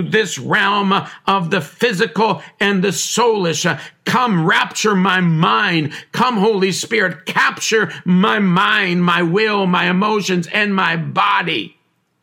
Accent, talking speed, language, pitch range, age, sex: American, 125 wpm, English, 160-210 Hz, 50-69, male